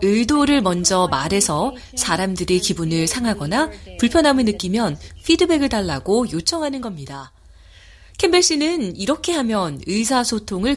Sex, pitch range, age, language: female, 180-280 Hz, 30-49, Korean